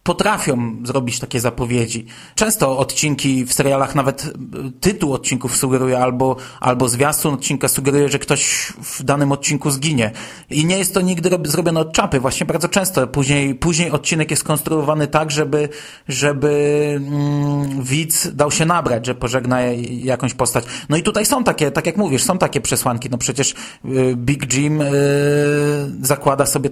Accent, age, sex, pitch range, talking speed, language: native, 30-49, male, 125-150 Hz, 155 wpm, Polish